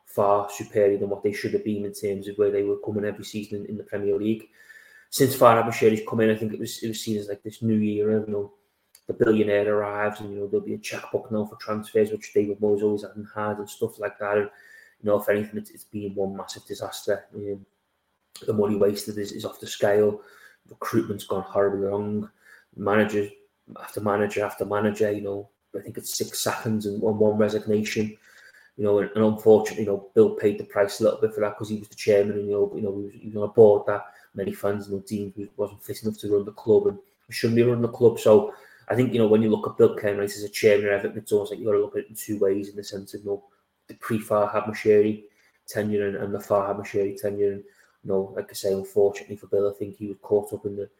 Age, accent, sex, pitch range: 30-49, British, male, 100-110 Hz